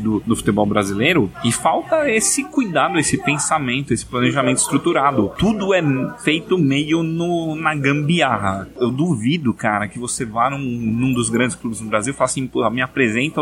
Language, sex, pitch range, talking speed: Portuguese, male, 110-145 Hz, 165 wpm